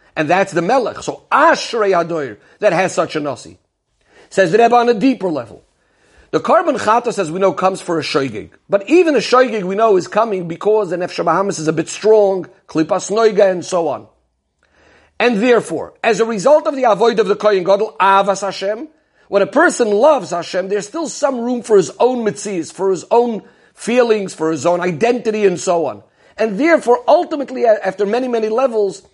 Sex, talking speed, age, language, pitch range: male, 195 wpm, 50-69, English, 185-240 Hz